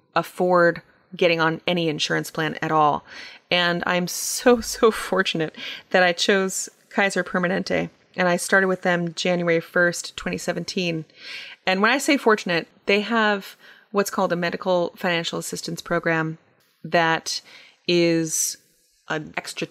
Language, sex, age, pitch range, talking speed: English, female, 30-49, 165-205 Hz, 135 wpm